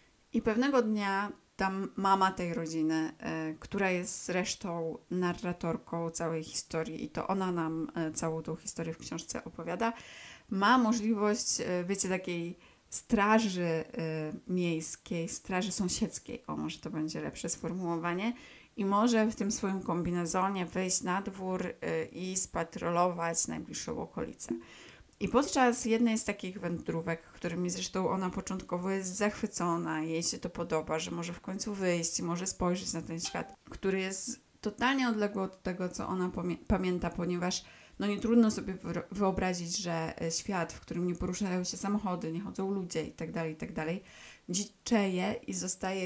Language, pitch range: Polish, 165-195 Hz